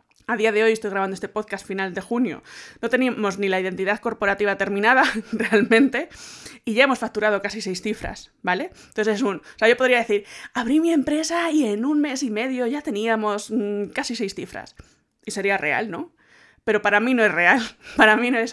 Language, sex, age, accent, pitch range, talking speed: Spanish, female, 20-39, Spanish, 200-240 Hz, 205 wpm